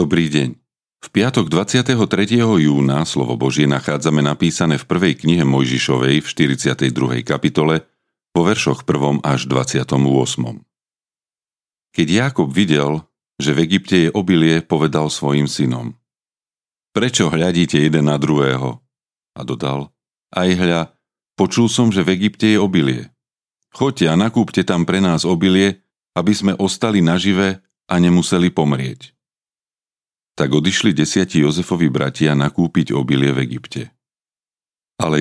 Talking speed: 125 wpm